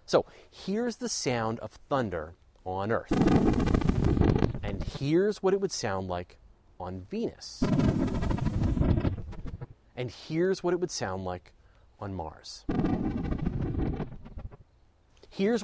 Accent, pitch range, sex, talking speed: American, 100-150 Hz, male, 105 wpm